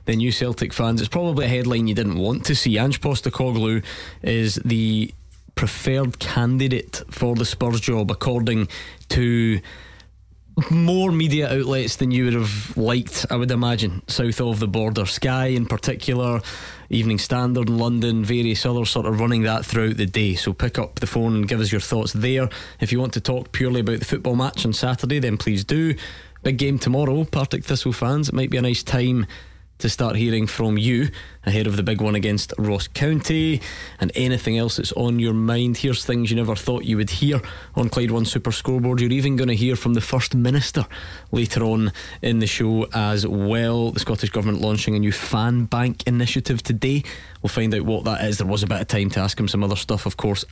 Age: 20-39